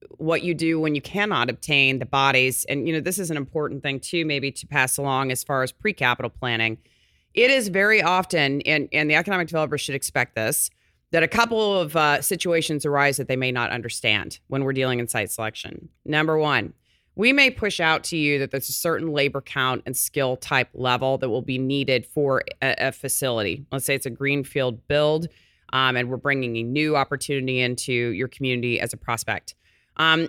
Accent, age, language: American, 30-49, English